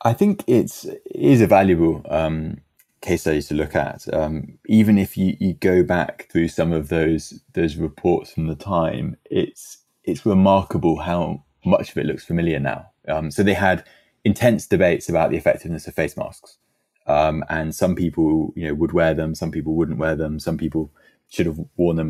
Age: 20-39